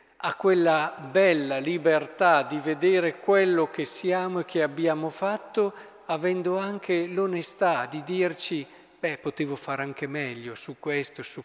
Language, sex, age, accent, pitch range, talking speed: Italian, male, 50-69, native, 155-220 Hz, 135 wpm